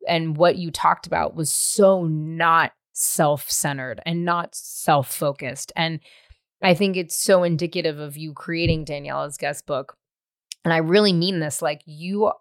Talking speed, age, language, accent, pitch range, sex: 150 wpm, 20-39, English, American, 155-185 Hz, female